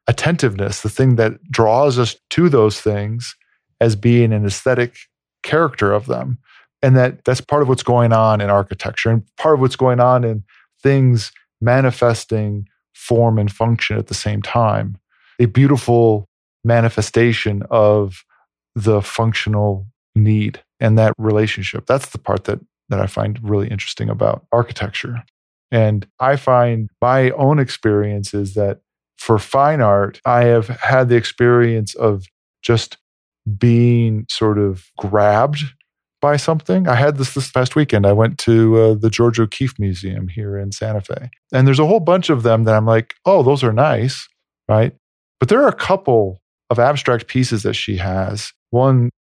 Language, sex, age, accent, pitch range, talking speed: English, male, 40-59, American, 105-125 Hz, 160 wpm